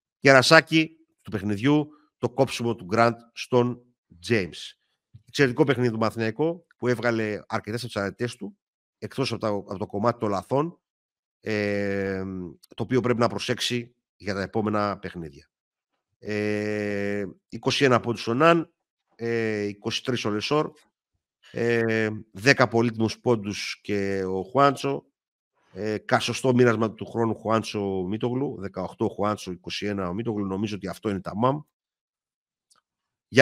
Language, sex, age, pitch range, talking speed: Greek, male, 50-69, 100-125 Hz, 130 wpm